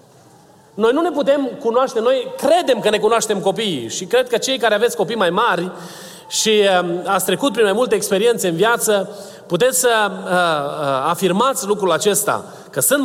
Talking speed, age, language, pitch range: 165 wpm, 30-49, Romanian, 230-305 Hz